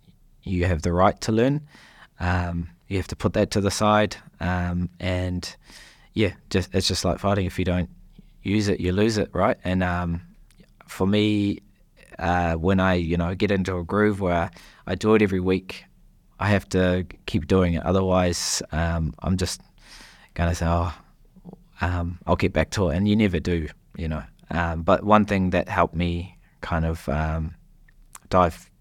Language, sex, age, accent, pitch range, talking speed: English, male, 20-39, Australian, 85-95 Hz, 180 wpm